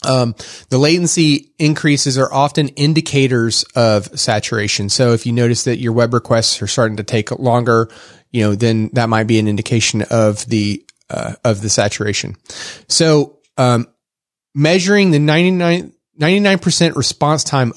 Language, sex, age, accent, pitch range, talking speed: English, male, 30-49, American, 115-140 Hz, 150 wpm